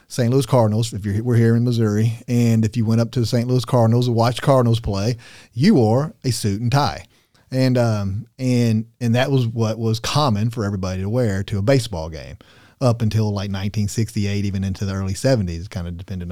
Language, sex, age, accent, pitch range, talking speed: English, male, 40-59, American, 100-130 Hz, 215 wpm